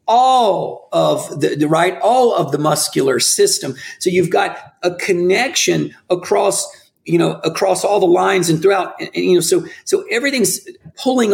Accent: American